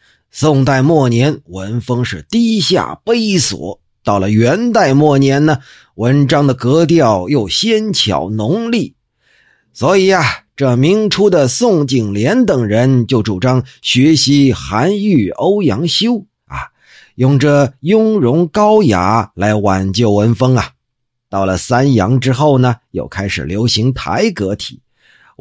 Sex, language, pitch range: male, Chinese, 110-180 Hz